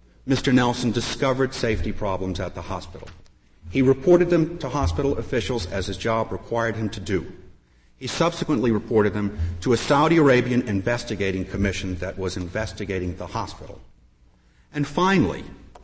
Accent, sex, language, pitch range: American, male, English, 90-125 Hz